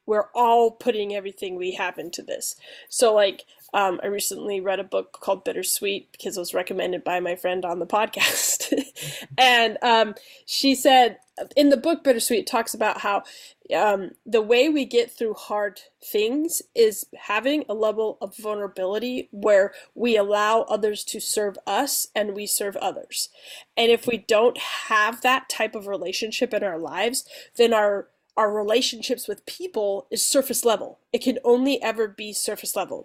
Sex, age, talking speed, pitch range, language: female, 20-39, 165 wpm, 200-250 Hz, English